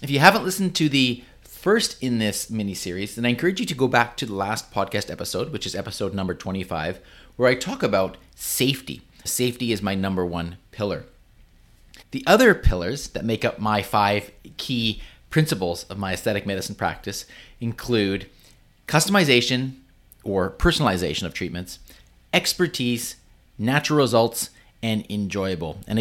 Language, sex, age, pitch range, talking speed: English, male, 30-49, 100-145 Hz, 150 wpm